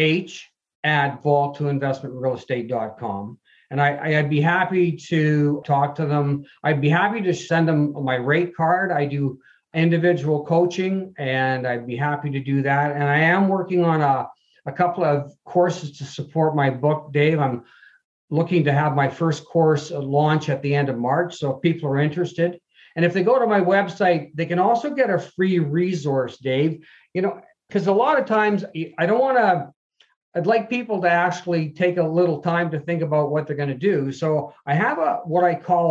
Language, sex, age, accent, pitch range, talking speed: English, male, 50-69, American, 145-180 Hz, 200 wpm